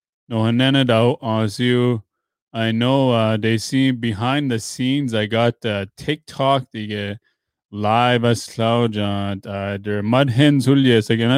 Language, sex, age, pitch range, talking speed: English, male, 20-39, 110-135 Hz, 85 wpm